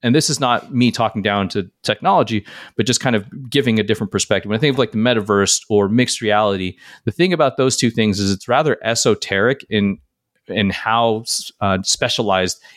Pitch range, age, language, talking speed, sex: 100-125 Hz, 30-49, English, 195 wpm, male